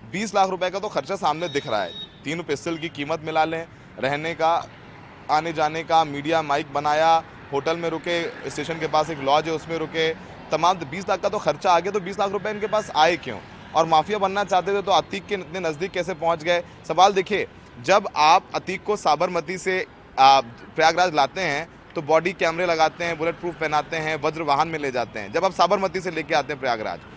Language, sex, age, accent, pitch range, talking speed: Hindi, male, 30-49, native, 160-195 Hz, 220 wpm